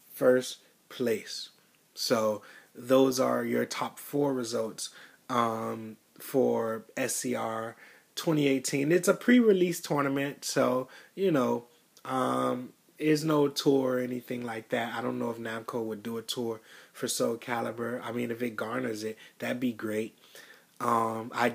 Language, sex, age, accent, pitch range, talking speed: English, male, 20-39, American, 115-140 Hz, 140 wpm